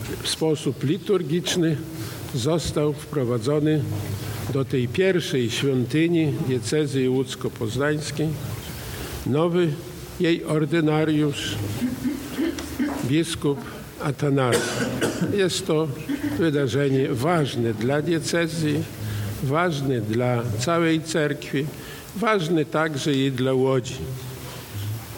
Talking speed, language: 75 wpm, Polish